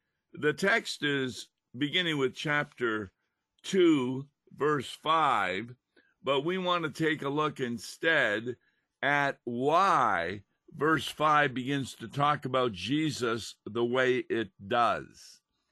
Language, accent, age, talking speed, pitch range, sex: English, American, 50-69, 115 wpm, 130-160 Hz, male